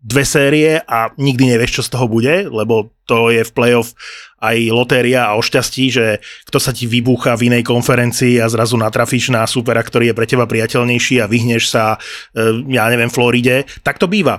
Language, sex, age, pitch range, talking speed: Slovak, male, 30-49, 120-140 Hz, 195 wpm